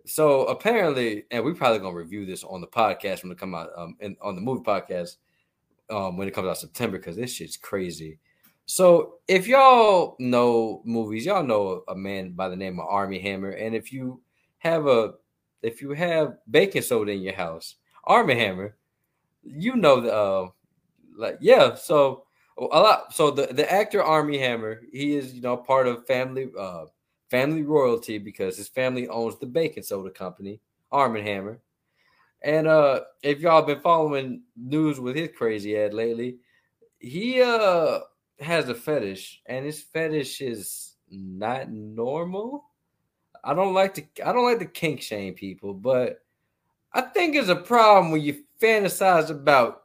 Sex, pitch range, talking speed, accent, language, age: male, 105-160 Hz, 170 wpm, American, English, 20-39